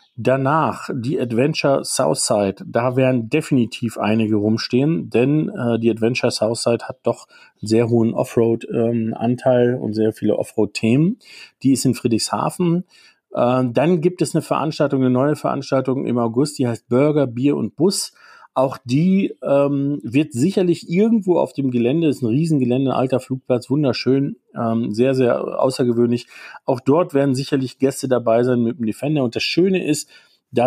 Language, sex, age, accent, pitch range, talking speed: German, male, 40-59, German, 115-140 Hz, 160 wpm